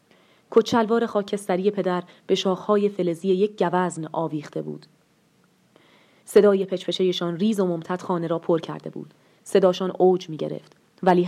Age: 30-49